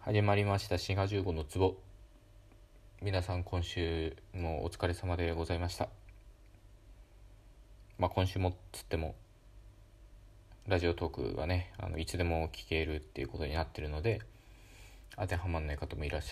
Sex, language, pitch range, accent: male, Japanese, 90-105 Hz, native